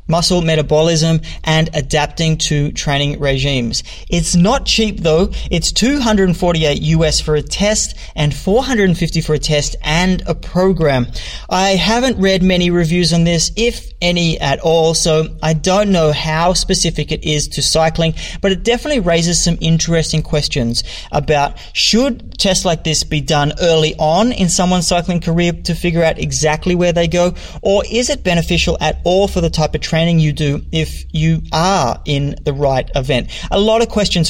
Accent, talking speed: Australian, 170 wpm